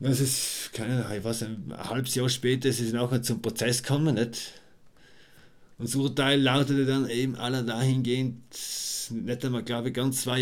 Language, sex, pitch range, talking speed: German, male, 120-140 Hz, 180 wpm